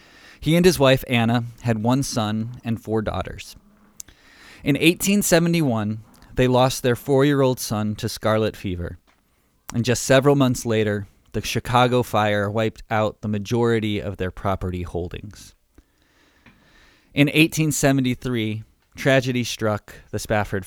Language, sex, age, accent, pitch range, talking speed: English, male, 20-39, American, 100-125 Hz, 125 wpm